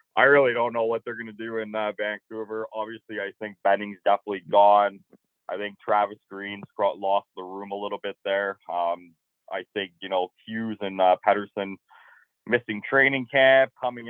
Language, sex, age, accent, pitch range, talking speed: English, male, 20-39, American, 95-110 Hz, 175 wpm